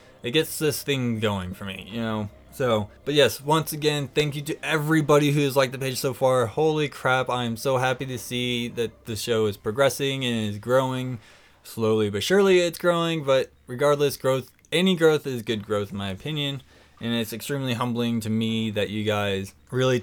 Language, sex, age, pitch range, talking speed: English, male, 20-39, 105-140 Hz, 195 wpm